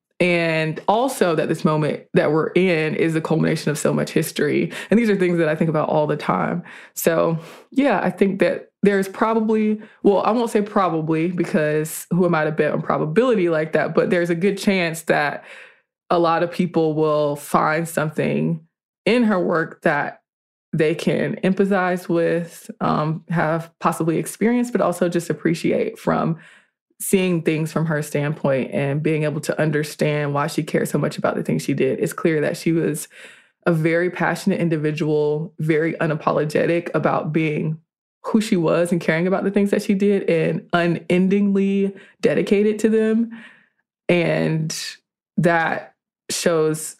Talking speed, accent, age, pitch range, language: 165 wpm, American, 20-39, 155-195 Hz, English